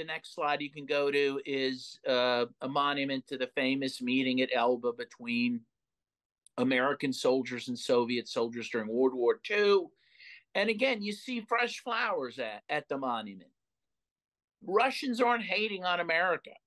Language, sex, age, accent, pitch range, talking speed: English, male, 50-69, American, 120-175 Hz, 150 wpm